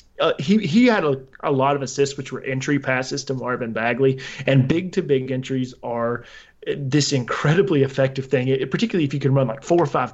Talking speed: 215 wpm